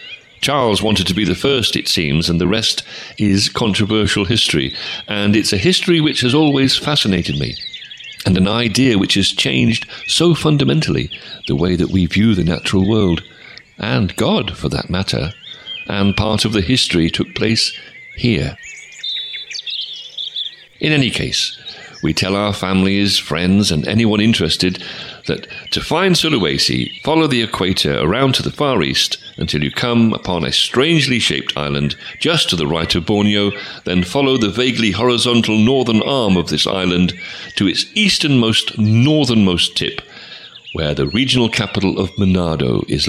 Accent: British